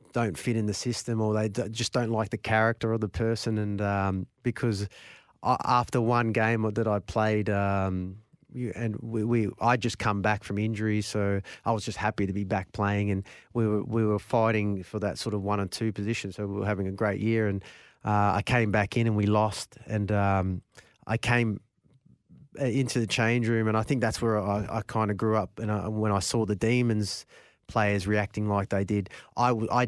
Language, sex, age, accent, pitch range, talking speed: English, male, 20-39, Australian, 100-115 Hz, 220 wpm